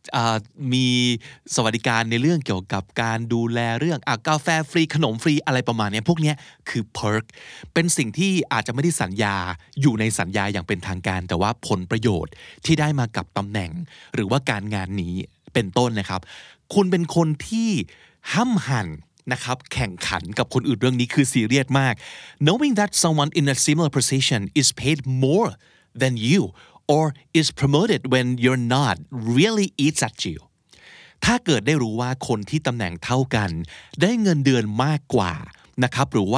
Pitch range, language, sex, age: 110-155 Hz, Thai, male, 30-49